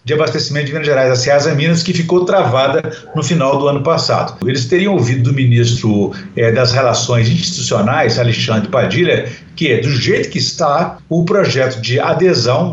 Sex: male